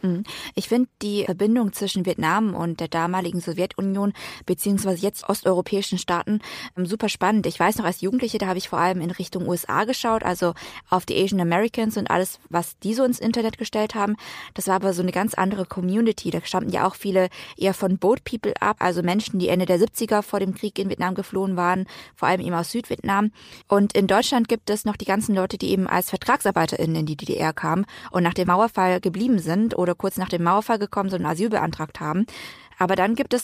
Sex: female